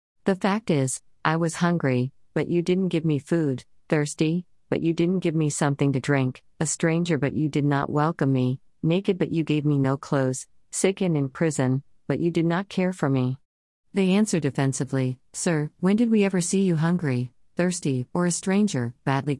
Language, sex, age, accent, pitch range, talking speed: English, female, 40-59, American, 130-170 Hz, 195 wpm